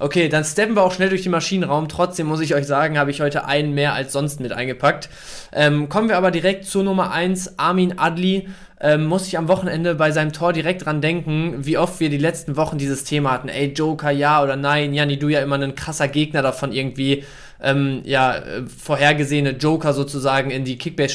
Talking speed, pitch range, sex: 215 wpm, 140-175 Hz, male